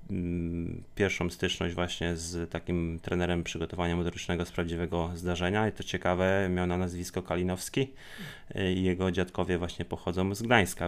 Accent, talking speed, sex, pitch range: native, 140 wpm, male, 85-95 Hz